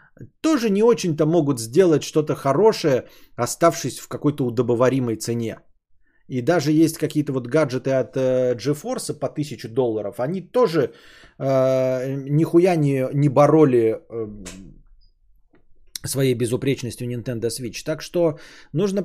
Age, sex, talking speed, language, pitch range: 20-39, male, 120 wpm, Bulgarian, 125-160 Hz